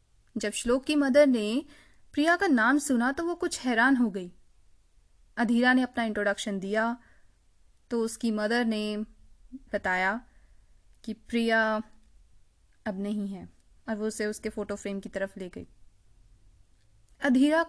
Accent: native